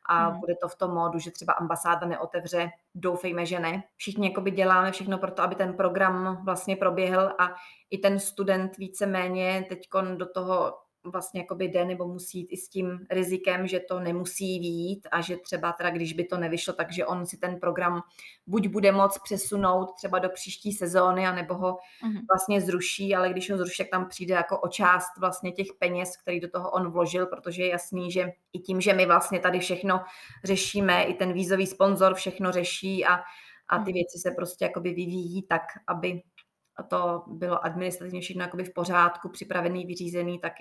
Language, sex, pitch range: Czech, female, 175-190 Hz